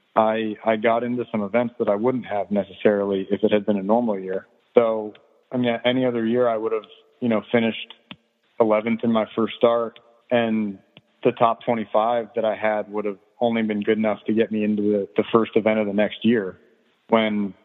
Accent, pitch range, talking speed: American, 105-115 Hz, 205 wpm